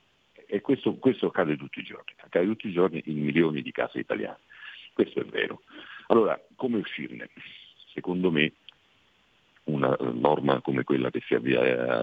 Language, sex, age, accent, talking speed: Italian, male, 50-69, native, 160 wpm